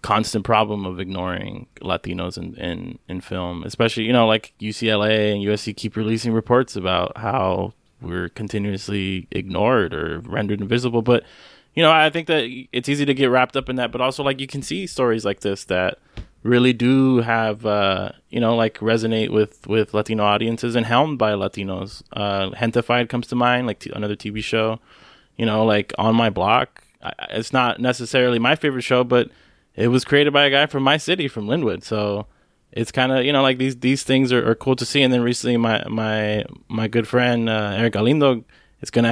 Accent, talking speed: American, 195 wpm